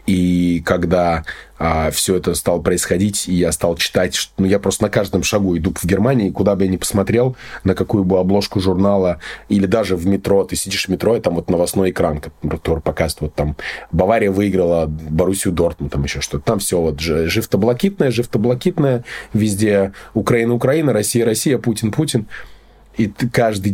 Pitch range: 85-105 Hz